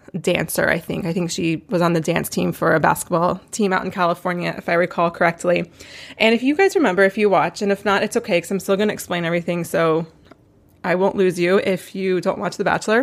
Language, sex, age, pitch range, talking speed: English, female, 20-39, 180-215 Hz, 245 wpm